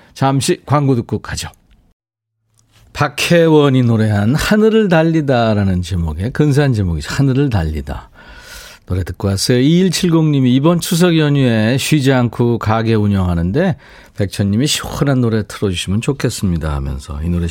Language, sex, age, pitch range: Korean, male, 40-59, 100-160 Hz